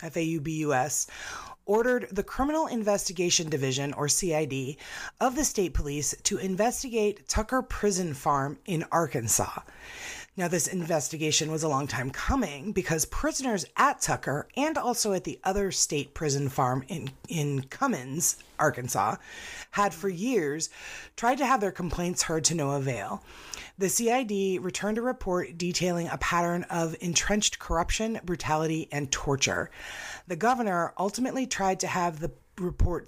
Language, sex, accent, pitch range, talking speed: English, female, American, 155-205 Hz, 140 wpm